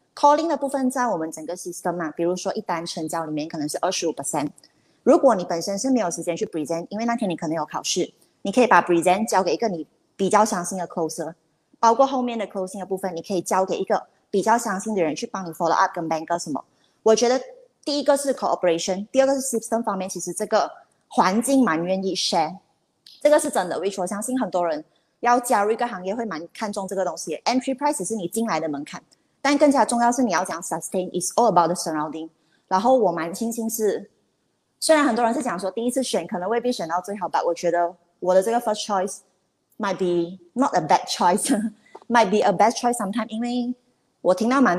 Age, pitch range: 20-39, 170-230 Hz